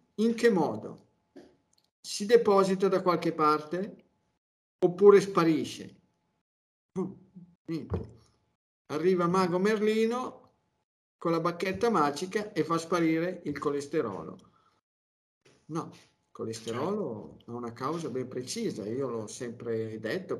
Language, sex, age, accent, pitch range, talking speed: Italian, male, 50-69, native, 125-185 Hz, 100 wpm